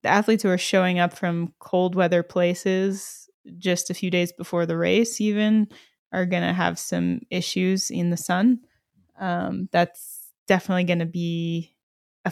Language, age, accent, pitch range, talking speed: English, 20-39, American, 175-205 Hz, 165 wpm